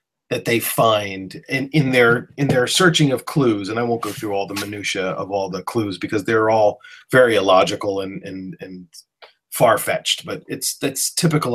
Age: 30-49